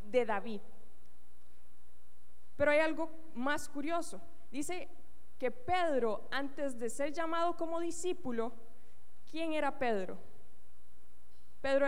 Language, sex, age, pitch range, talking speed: Spanish, female, 20-39, 235-315 Hz, 100 wpm